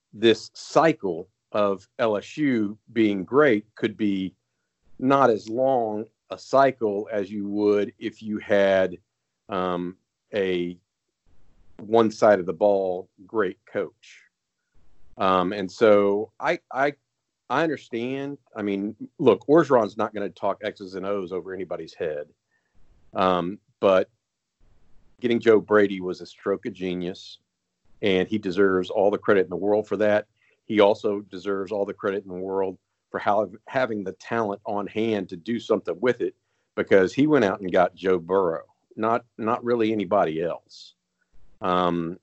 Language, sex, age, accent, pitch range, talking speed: English, male, 40-59, American, 95-110 Hz, 150 wpm